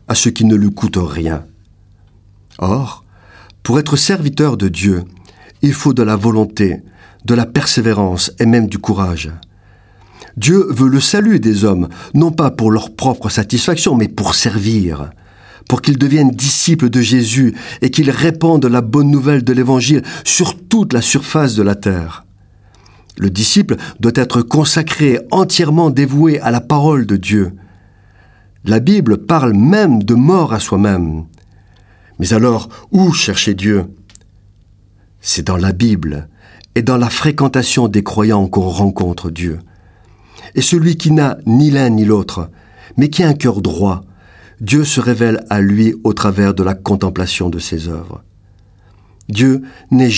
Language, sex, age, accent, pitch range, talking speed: French, male, 50-69, French, 100-130 Hz, 155 wpm